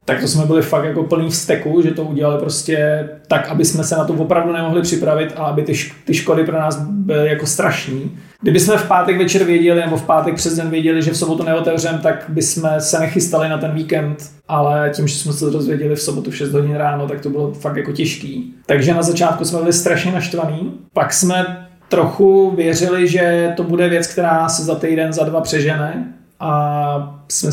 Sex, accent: male, native